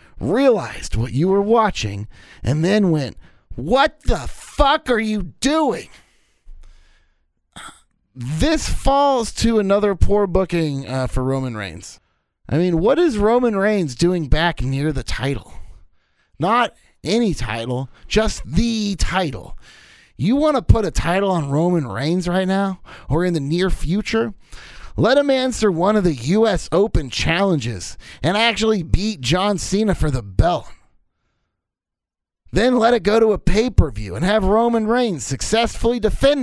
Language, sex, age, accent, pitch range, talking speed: English, male, 30-49, American, 130-220 Hz, 145 wpm